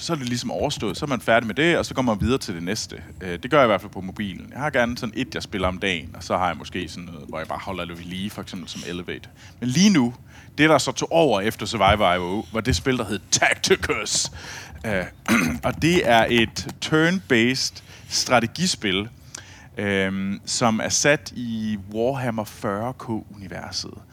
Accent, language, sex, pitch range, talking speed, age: native, Danish, male, 100-125 Hz, 205 wpm, 30-49